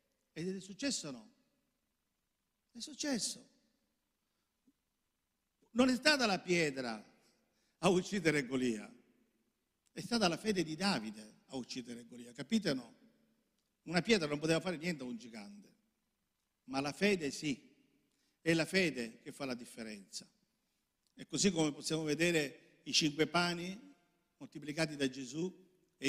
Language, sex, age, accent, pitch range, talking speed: Italian, male, 50-69, native, 145-205 Hz, 135 wpm